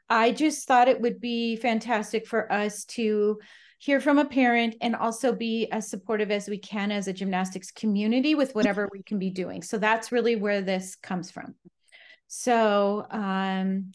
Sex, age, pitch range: female, 40-59, 195-230 Hz